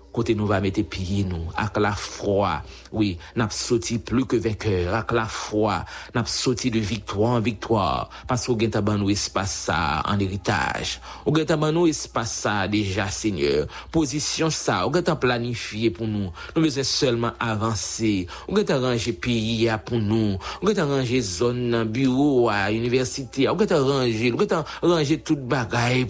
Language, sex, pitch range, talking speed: English, male, 105-125 Hz, 185 wpm